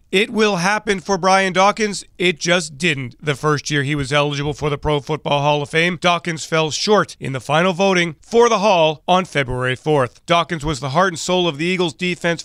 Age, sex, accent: 40-59, male, American